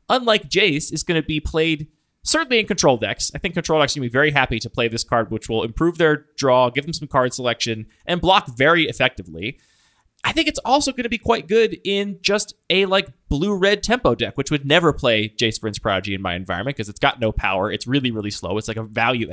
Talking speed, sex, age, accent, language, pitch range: 240 wpm, male, 20-39, American, English, 120-170 Hz